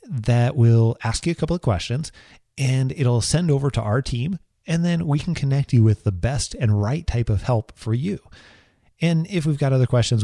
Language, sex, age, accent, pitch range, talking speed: English, male, 30-49, American, 105-130 Hz, 215 wpm